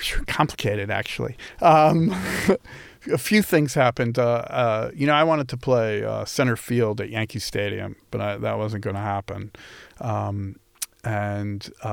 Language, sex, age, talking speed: English, male, 40-59, 140 wpm